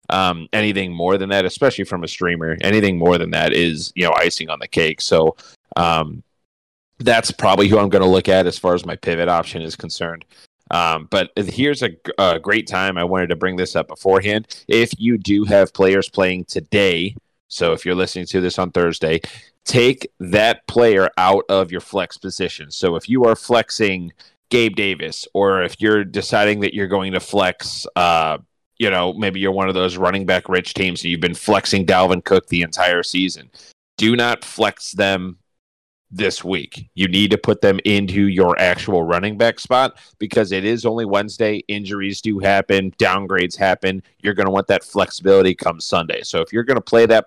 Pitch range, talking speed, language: 90-105 Hz, 195 wpm, English